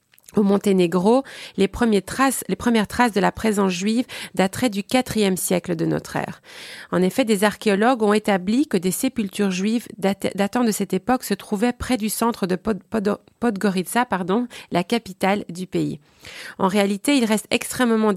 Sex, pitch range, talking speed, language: female, 185-225 Hz, 155 wpm, French